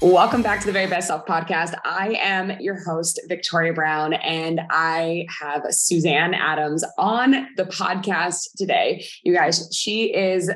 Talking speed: 155 wpm